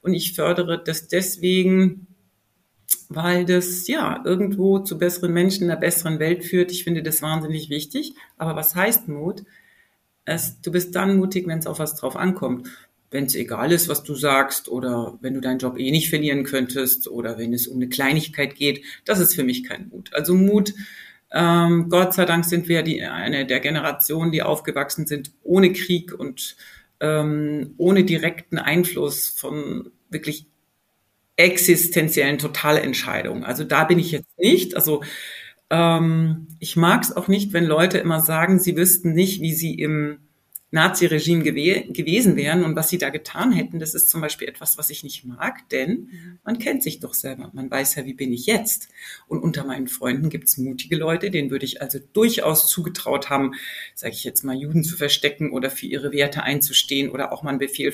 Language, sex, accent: German, female, German